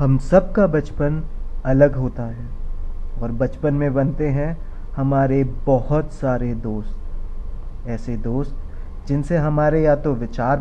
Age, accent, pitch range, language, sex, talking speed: 20-39, native, 115-155 Hz, Hindi, male, 130 wpm